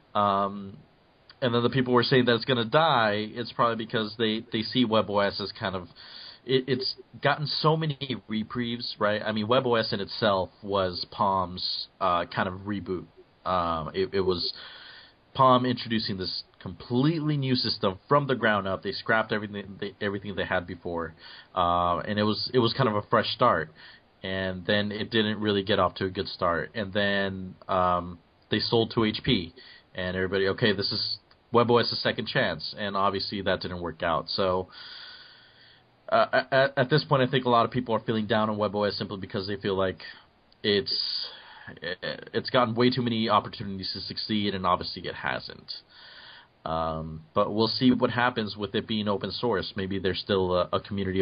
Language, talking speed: English, 185 wpm